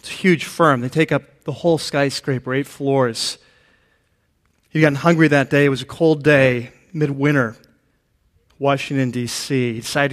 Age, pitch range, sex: 40-59, 135-155 Hz, male